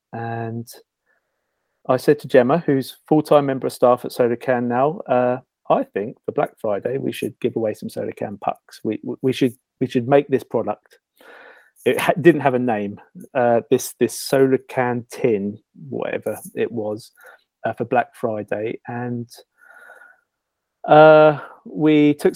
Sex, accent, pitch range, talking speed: male, British, 115-140 Hz, 155 wpm